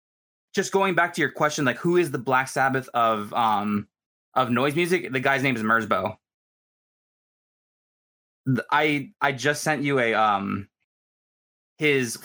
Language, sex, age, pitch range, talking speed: English, male, 20-39, 125-165 Hz, 145 wpm